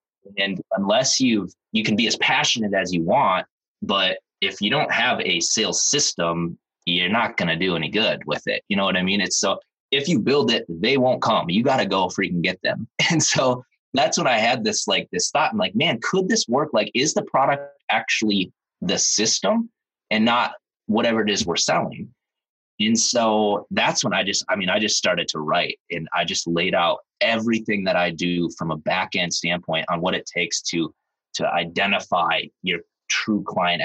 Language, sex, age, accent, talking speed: English, male, 20-39, American, 205 wpm